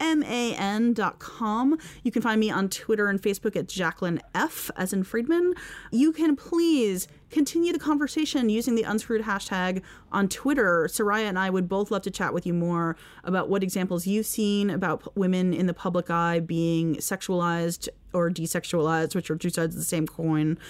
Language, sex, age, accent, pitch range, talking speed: English, female, 30-49, American, 180-260 Hz, 180 wpm